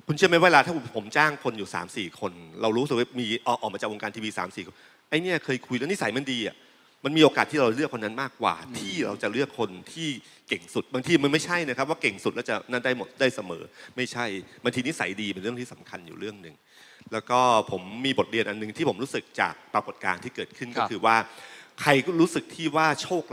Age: 30-49